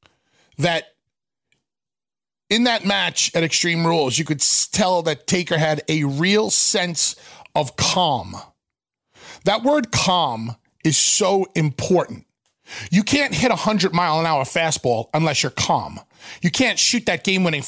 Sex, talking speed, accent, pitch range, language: male, 130 wpm, American, 160-215 Hz, English